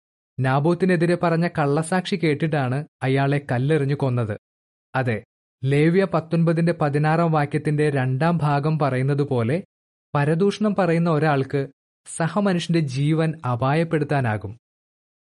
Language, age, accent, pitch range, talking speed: Malayalam, 20-39, native, 140-175 Hz, 80 wpm